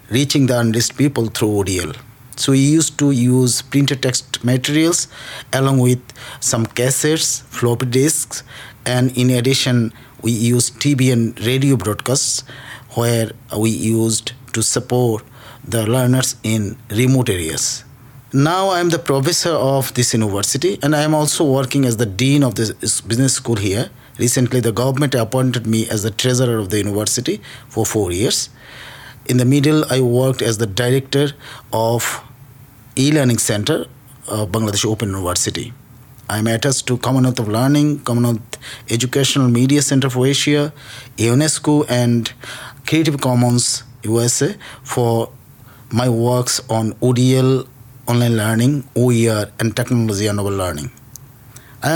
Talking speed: 135 wpm